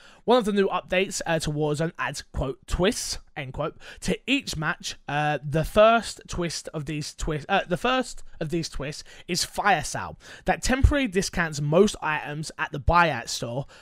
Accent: British